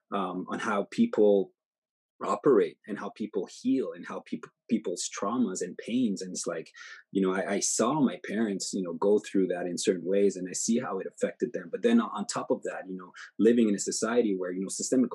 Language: English